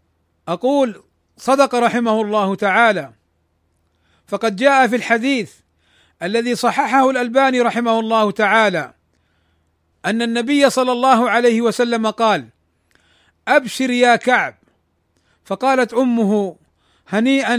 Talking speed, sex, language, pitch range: 95 wpm, male, Arabic, 175-255 Hz